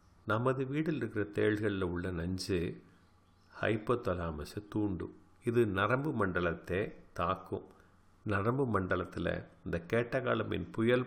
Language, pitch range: Tamil, 90-120 Hz